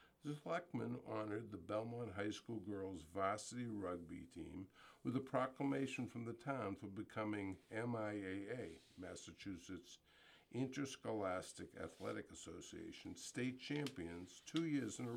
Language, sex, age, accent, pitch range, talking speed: English, male, 60-79, American, 100-135 Hz, 115 wpm